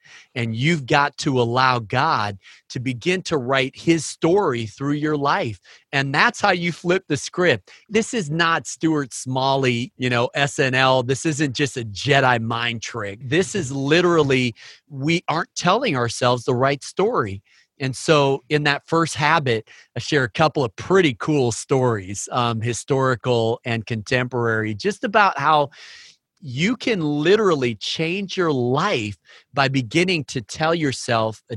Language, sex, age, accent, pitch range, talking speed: English, male, 40-59, American, 120-155 Hz, 150 wpm